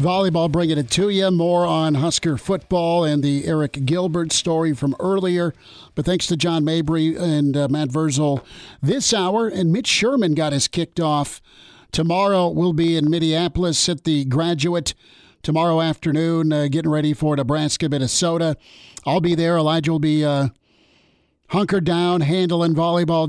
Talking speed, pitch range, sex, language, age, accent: 155 wpm, 145-170 Hz, male, English, 50-69, American